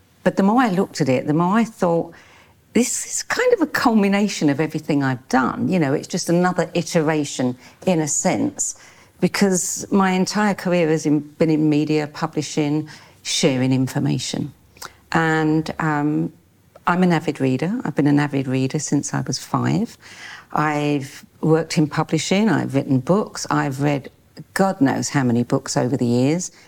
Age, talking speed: 50-69, 165 wpm